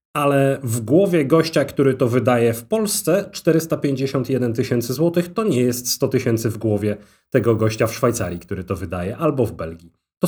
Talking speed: 175 wpm